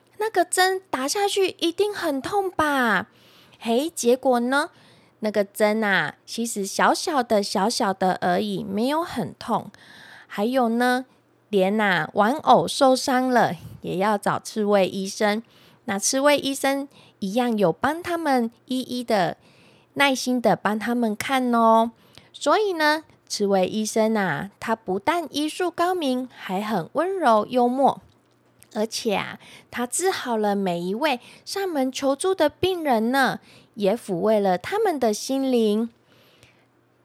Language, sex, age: Chinese, female, 20-39